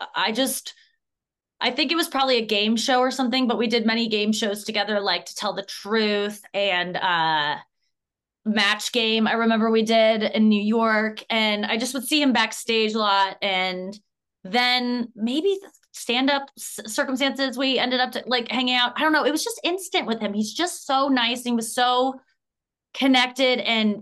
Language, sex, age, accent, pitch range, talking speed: English, female, 20-39, American, 210-255 Hz, 185 wpm